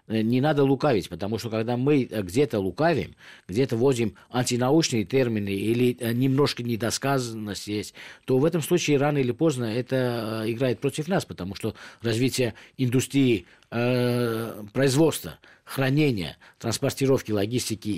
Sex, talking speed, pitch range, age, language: male, 120 wpm, 105-140 Hz, 50-69, Russian